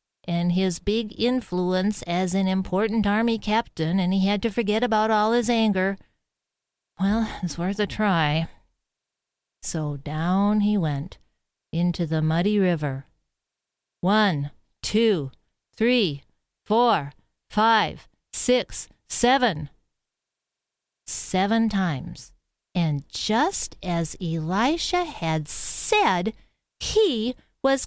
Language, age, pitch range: English, 40-59, 175-275 Hz